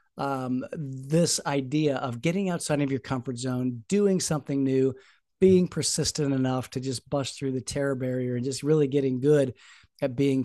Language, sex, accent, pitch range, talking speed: English, male, American, 135-170 Hz, 170 wpm